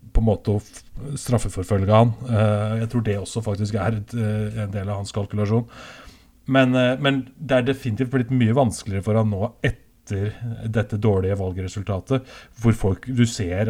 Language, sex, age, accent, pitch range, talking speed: English, male, 30-49, Norwegian, 105-120 Hz, 155 wpm